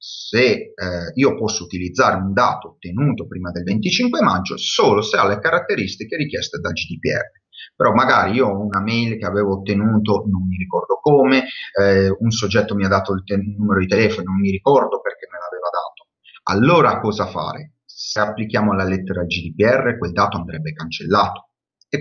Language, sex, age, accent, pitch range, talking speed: Italian, male, 30-49, native, 100-125 Hz, 170 wpm